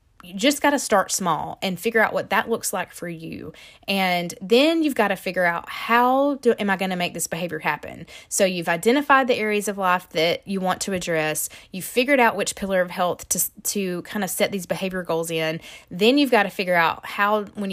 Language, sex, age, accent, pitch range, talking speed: English, female, 20-39, American, 175-220 Hz, 225 wpm